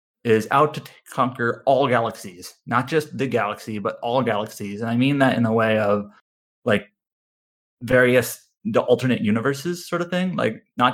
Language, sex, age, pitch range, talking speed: English, male, 30-49, 110-130 Hz, 175 wpm